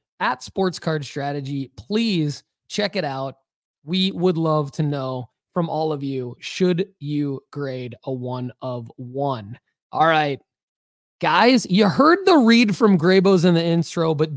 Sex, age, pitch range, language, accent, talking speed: male, 20-39, 155-210 Hz, English, American, 155 wpm